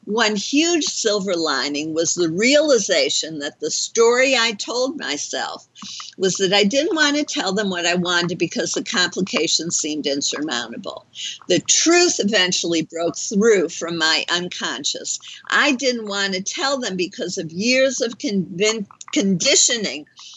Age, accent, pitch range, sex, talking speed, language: 50-69, American, 175-240 Hz, female, 140 wpm, English